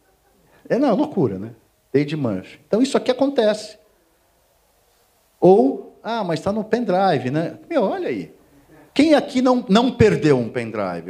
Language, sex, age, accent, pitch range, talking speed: Portuguese, male, 50-69, Brazilian, 125-165 Hz, 150 wpm